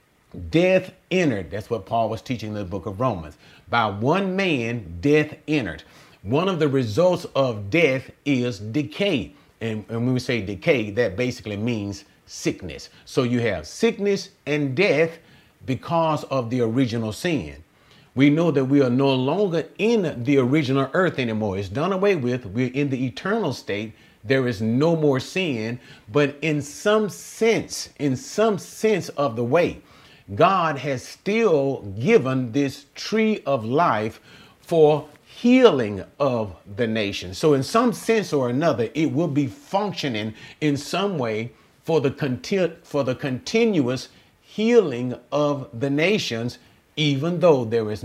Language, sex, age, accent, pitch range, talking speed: English, male, 40-59, American, 115-155 Hz, 150 wpm